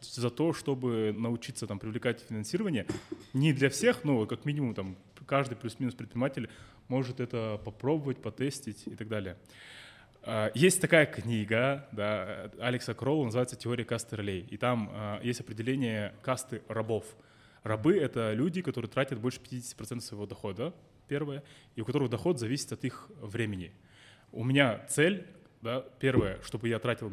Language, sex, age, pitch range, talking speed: Russian, male, 20-39, 110-135 Hz, 135 wpm